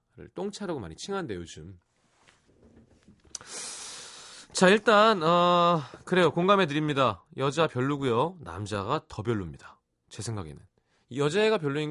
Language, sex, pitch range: Korean, male, 105-165 Hz